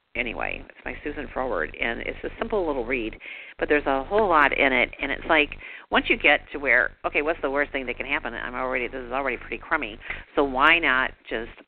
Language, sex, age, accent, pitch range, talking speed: English, female, 50-69, American, 140-230 Hz, 230 wpm